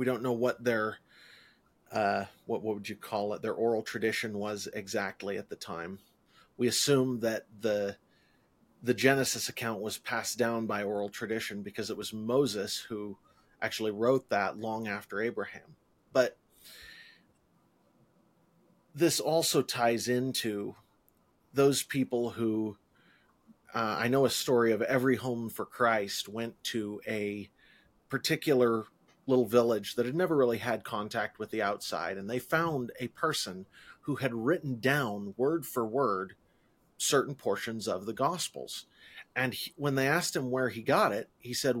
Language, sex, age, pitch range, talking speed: English, male, 40-59, 105-135 Hz, 150 wpm